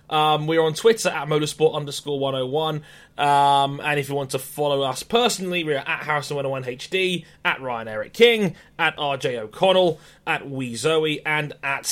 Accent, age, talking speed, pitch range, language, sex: British, 20-39, 170 wpm, 135-165 Hz, English, male